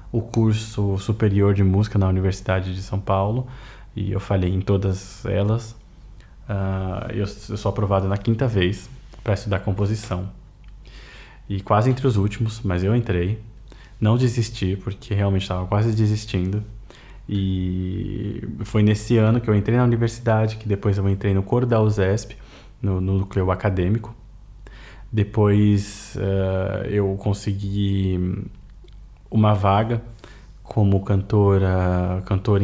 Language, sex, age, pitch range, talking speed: Hungarian, male, 20-39, 95-110 Hz, 130 wpm